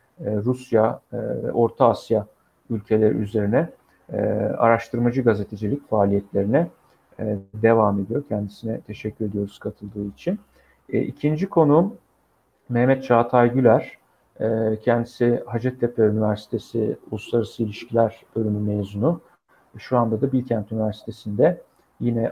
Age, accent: 50-69, native